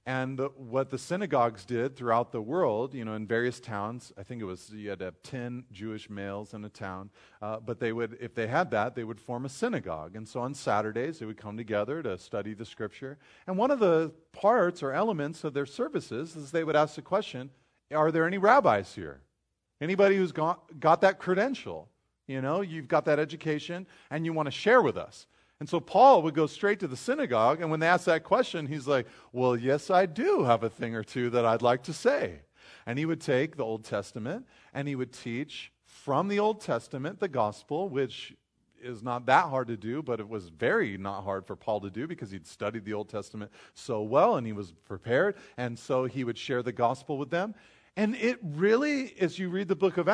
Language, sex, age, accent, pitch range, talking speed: English, male, 40-59, American, 115-165 Hz, 225 wpm